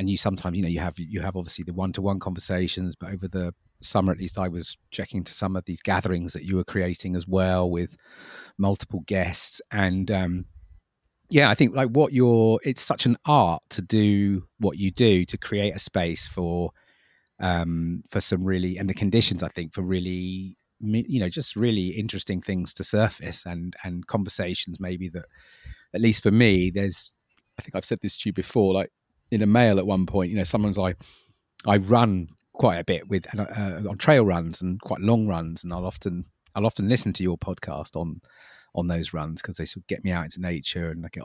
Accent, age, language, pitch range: British, 30-49, English, 90-110 Hz